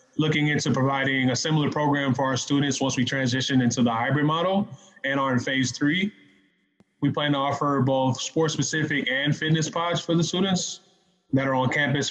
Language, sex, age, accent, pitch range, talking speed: English, male, 20-39, American, 130-150 Hz, 190 wpm